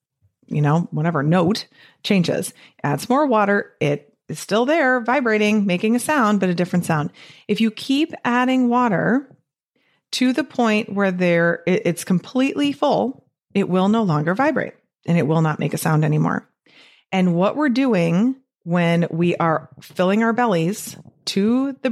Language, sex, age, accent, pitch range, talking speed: English, female, 30-49, American, 160-225 Hz, 160 wpm